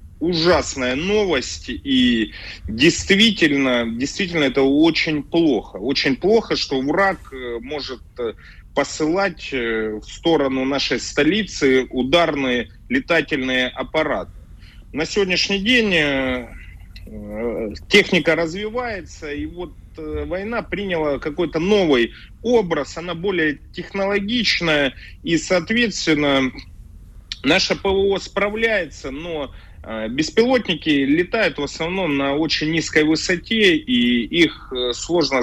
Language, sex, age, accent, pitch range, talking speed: Russian, male, 30-49, native, 130-195 Hz, 90 wpm